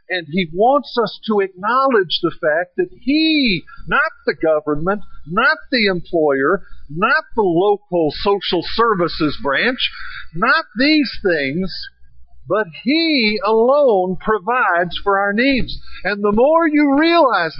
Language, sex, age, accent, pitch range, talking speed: English, male, 50-69, American, 150-235 Hz, 125 wpm